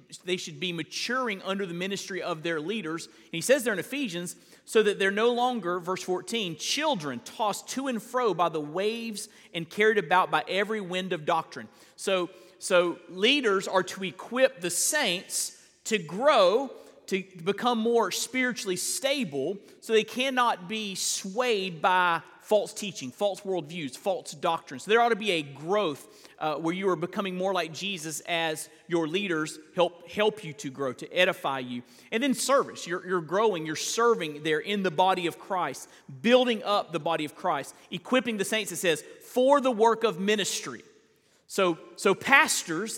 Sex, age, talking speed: male, 40-59, 170 wpm